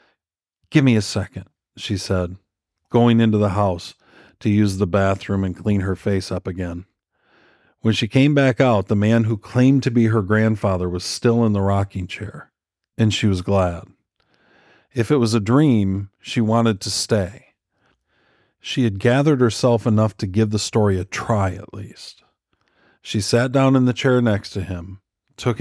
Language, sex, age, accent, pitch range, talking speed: English, male, 40-59, American, 95-120 Hz, 175 wpm